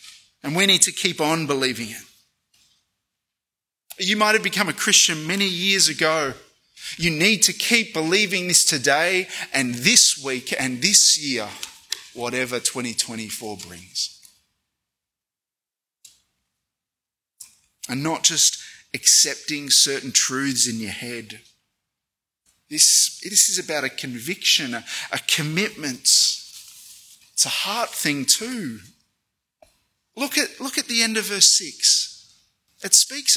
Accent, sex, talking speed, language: Australian, male, 120 wpm, English